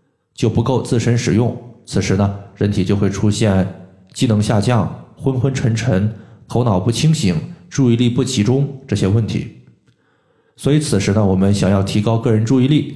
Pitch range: 100-130 Hz